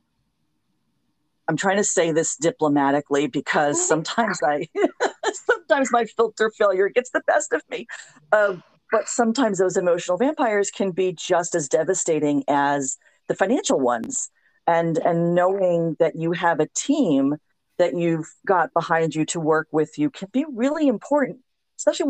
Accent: American